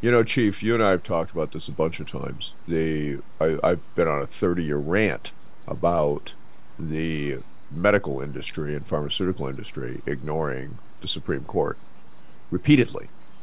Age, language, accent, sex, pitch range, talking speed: 50-69, English, American, male, 80-110 Hz, 145 wpm